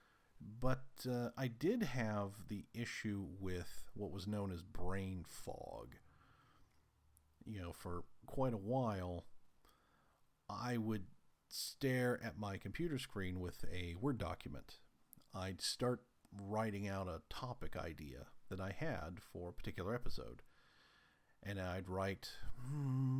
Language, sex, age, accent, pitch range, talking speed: English, male, 50-69, American, 90-125 Hz, 125 wpm